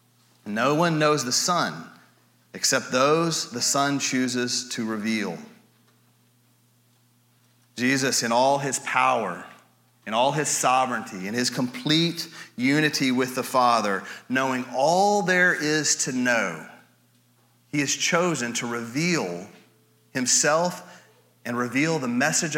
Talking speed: 115 wpm